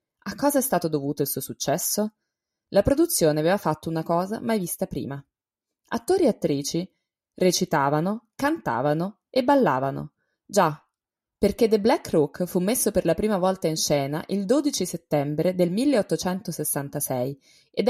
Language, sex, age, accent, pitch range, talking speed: Italian, female, 20-39, native, 150-205 Hz, 145 wpm